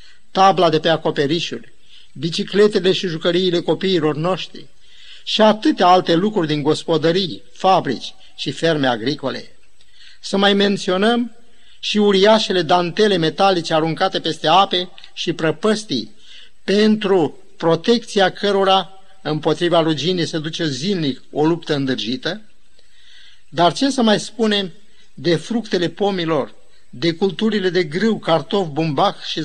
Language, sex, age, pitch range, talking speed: Romanian, male, 50-69, 160-200 Hz, 115 wpm